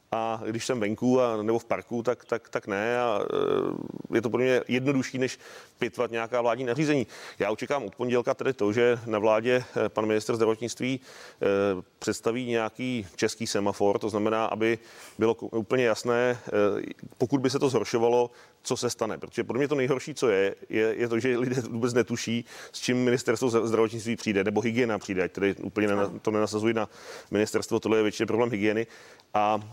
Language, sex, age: Czech, male, 30-49